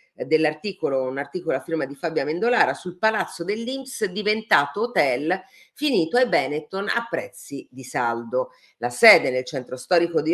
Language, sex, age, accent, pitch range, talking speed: Italian, female, 50-69, native, 135-210 Hz, 150 wpm